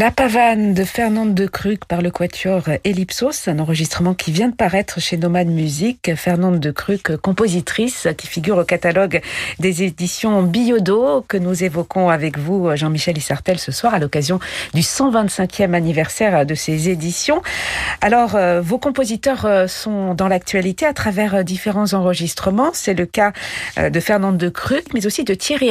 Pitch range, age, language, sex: 175-215 Hz, 50-69, French, female